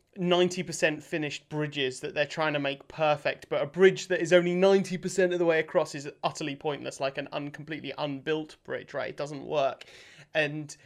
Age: 30-49